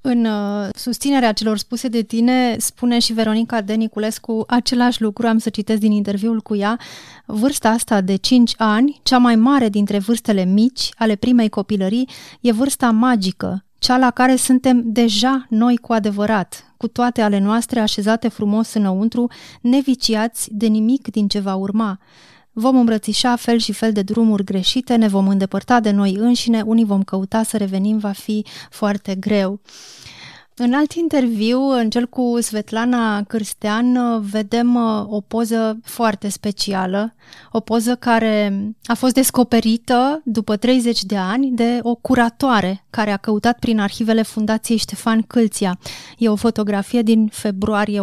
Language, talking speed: Romanian, 150 wpm